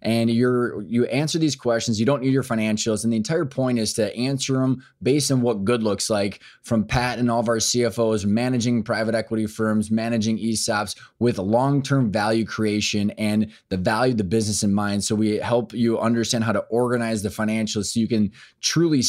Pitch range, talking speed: 110-125 Hz, 200 wpm